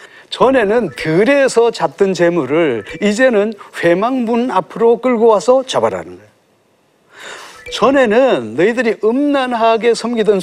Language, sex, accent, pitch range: Korean, male, native, 175-245 Hz